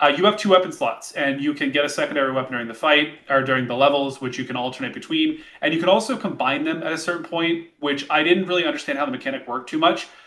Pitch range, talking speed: 130-200 Hz, 270 wpm